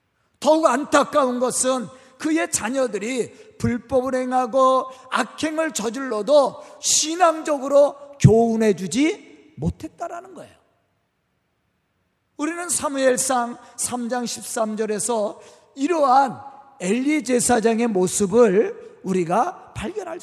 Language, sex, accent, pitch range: Korean, male, native, 220-300 Hz